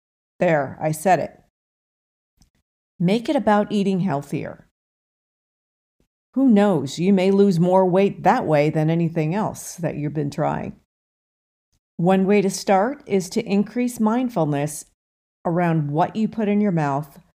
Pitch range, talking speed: 150-200 Hz, 140 wpm